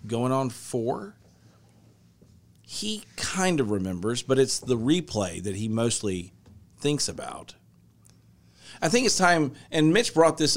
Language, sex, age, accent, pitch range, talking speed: English, male, 40-59, American, 110-150 Hz, 135 wpm